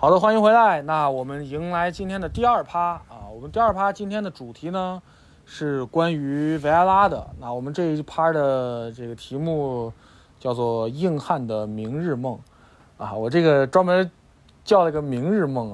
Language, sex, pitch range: Chinese, male, 115-165 Hz